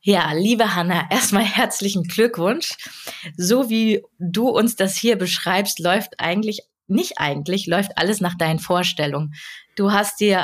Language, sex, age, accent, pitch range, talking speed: German, female, 20-39, German, 165-205 Hz, 145 wpm